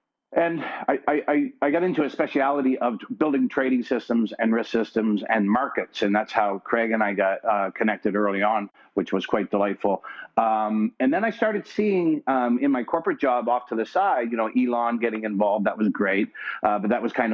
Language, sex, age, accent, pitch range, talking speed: English, male, 50-69, American, 110-130 Hz, 210 wpm